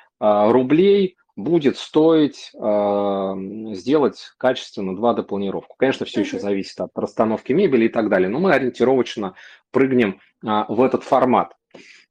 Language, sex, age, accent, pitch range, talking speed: Russian, male, 30-49, native, 110-145 Hz, 115 wpm